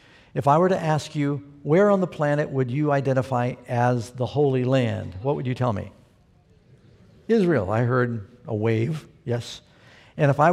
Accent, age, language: American, 60-79, English